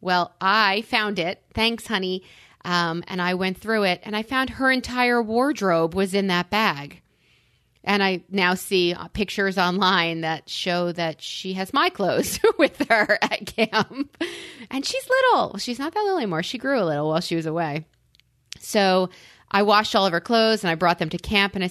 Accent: American